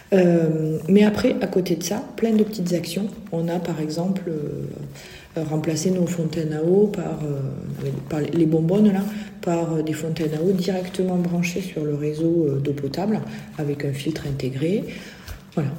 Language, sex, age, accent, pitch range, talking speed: French, female, 40-59, French, 155-195 Hz, 165 wpm